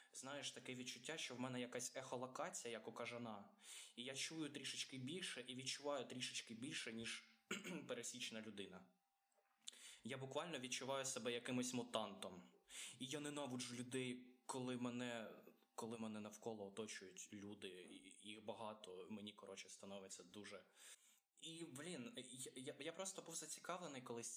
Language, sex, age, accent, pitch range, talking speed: Ukrainian, male, 20-39, native, 115-135 Hz, 135 wpm